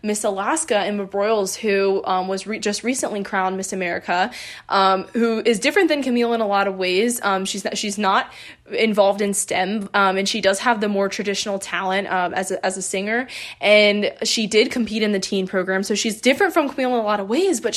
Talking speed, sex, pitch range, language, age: 225 wpm, female, 195-230 Hz, English, 20-39